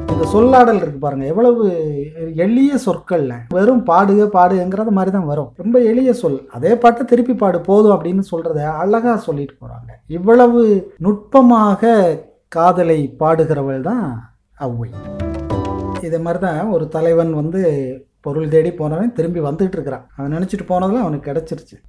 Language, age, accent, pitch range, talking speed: Tamil, 30-49, native, 150-200 Hz, 125 wpm